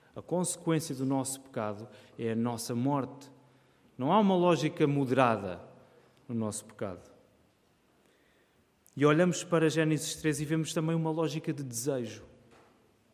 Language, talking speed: Portuguese, 130 wpm